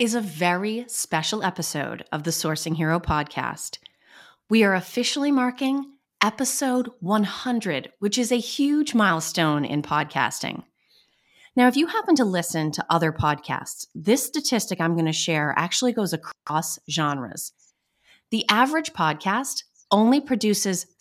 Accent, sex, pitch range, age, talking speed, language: American, female, 165-245 Hz, 30-49, 130 wpm, English